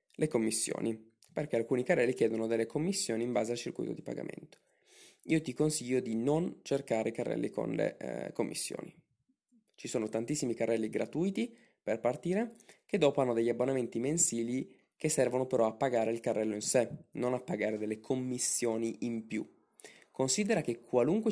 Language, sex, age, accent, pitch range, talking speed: Italian, male, 20-39, native, 110-130 Hz, 160 wpm